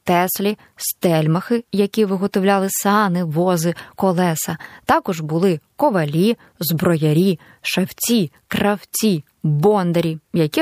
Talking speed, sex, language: 85 wpm, female, Ukrainian